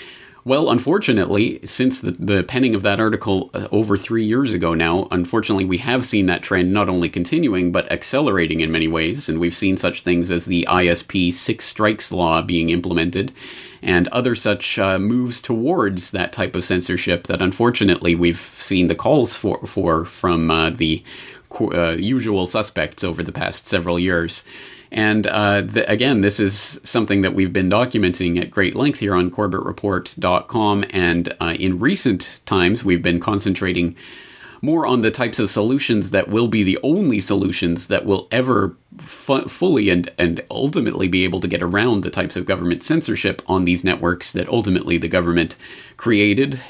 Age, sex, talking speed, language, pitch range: 30-49, male, 170 wpm, English, 85-105 Hz